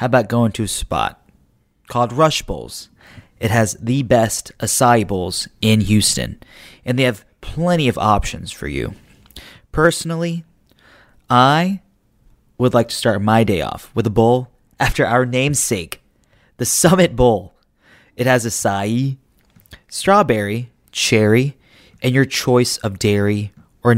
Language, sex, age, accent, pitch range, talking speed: English, male, 30-49, American, 105-130 Hz, 135 wpm